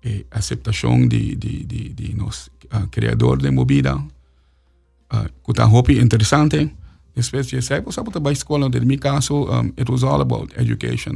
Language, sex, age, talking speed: English, male, 50-69, 115 wpm